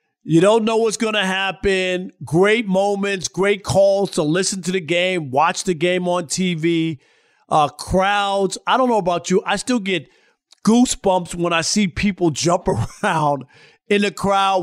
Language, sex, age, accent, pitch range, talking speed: English, male, 40-59, American, 165-205 Hz, 170 wpm